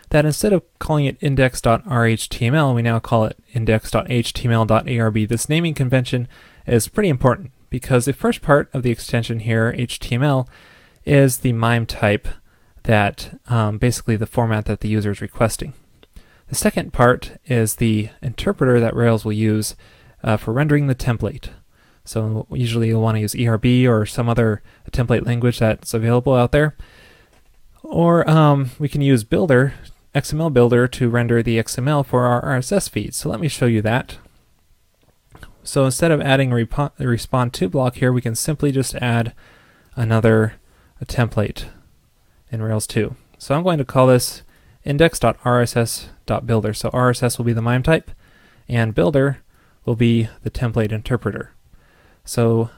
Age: 20-39